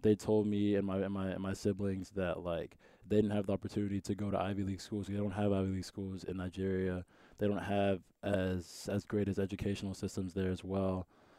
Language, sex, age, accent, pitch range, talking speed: English, male, 20-39, American, 95-105 Hz, 225 wpm